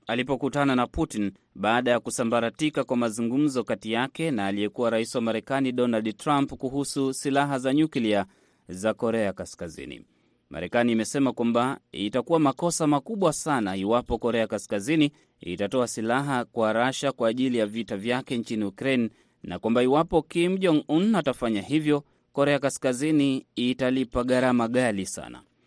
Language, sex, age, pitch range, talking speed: Swahili, male, 30-49, 120-150 Hz, 140 wpm